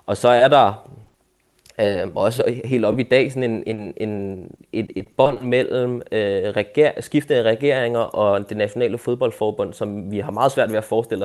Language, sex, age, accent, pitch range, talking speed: Danish, male, 20-39, native, 105-125 Hz, 180 wpm